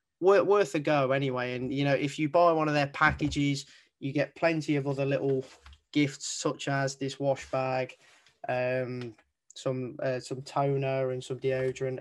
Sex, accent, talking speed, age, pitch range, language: male, British, 170 wpm, 20-39, 135-155 Hz, English